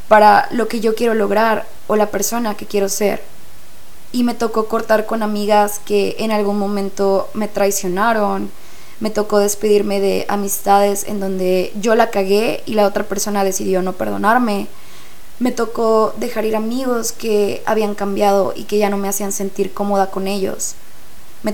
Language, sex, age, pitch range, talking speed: Spanish, female, 20-39, 200-230 Hz, 165 wpm